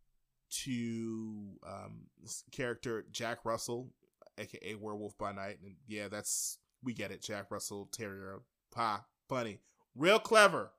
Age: 20-39